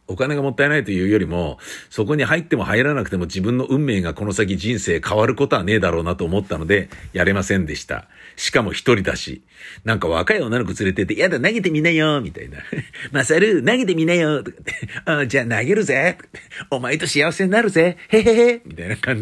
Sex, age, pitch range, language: male, 50-69, 90-130 Hz, Japanese